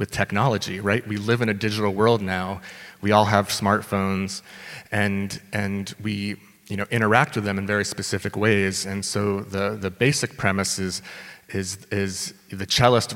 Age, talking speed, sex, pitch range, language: 30-49, 170 wpm, male, 100-110 Hz, English